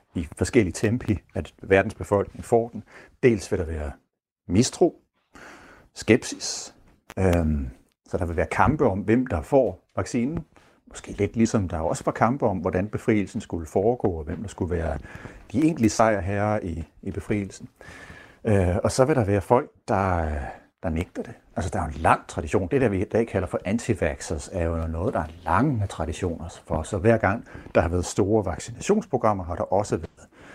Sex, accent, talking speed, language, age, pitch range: male, native, 185 wpm, Danish, 60-79, 85-110 Hz